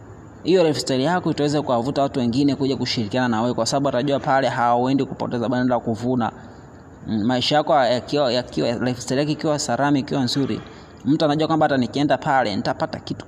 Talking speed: 145 wpm